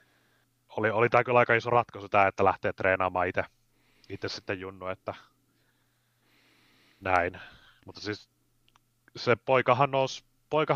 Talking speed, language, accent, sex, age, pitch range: 115 wpm, Finnish, native, male, 30-49, 105-125 Hz